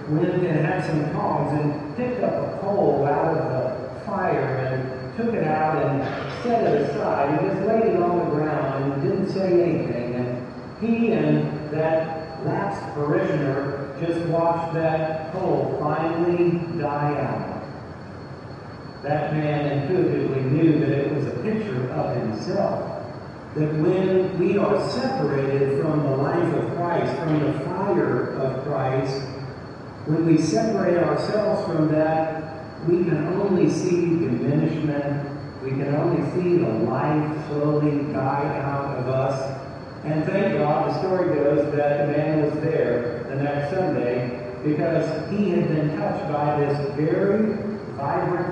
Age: 40-59